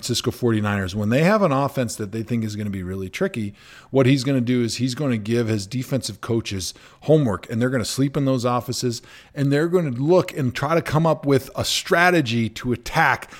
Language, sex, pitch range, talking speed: English, male, 110-135 Hz, 235 wpm